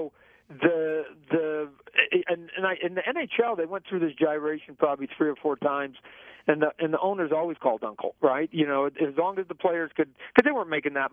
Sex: male